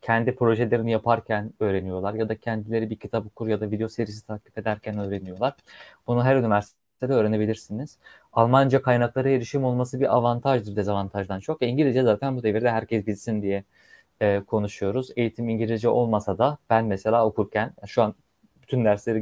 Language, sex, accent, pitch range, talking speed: Turkish, male, native, 110-145 Hz, 155 wpm